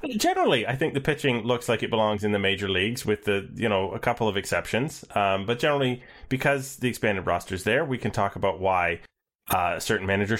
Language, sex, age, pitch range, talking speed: English, male, 30-49, 105-140 Hz, 220 wpm